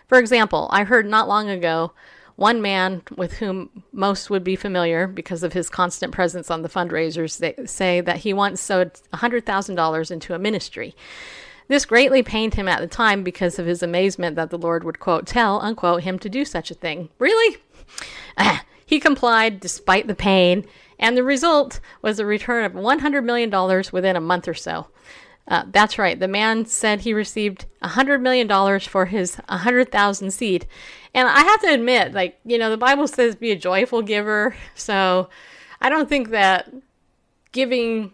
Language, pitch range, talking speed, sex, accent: English, 180-240 Hz, 185 wpm, female, American